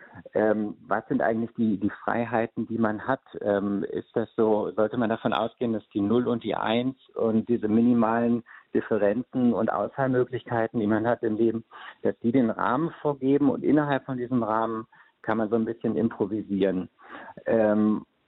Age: 50-69